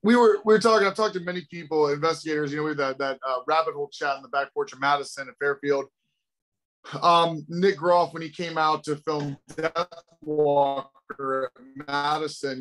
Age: 20-39